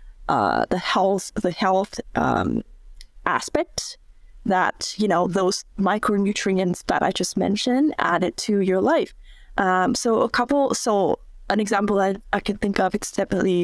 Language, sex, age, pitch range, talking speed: English, female, 20-39, 195-245 Hz, 150 wpm